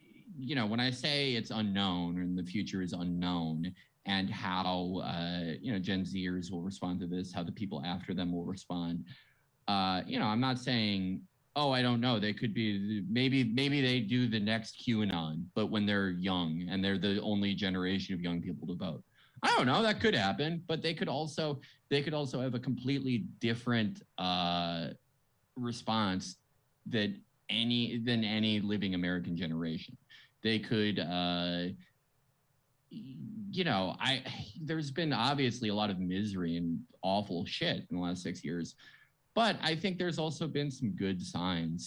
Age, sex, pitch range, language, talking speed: 20-39, male, 95-130 Hz, English, 170 wpm